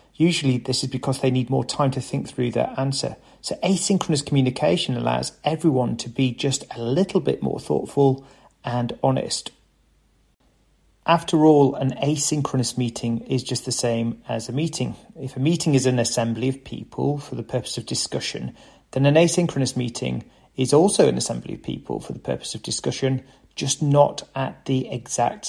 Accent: British